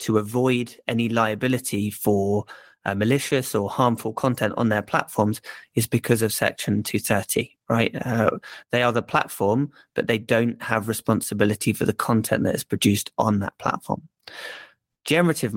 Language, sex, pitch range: English, male, 110-130 Hz